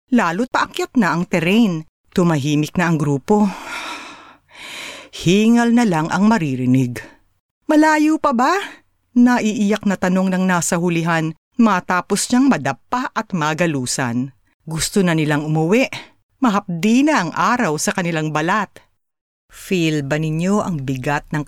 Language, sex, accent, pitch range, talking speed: Filipino, female, native, 145-225 Hz, 125 wpm